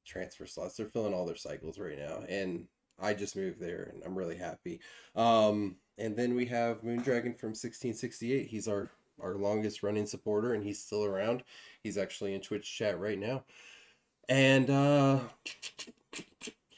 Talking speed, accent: 165 wpm, American